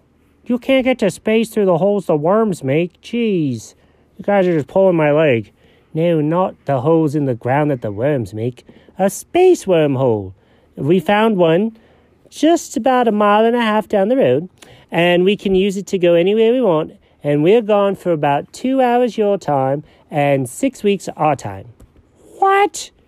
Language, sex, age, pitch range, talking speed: English, male, 40-59, 135-220 Hz, 185 wpm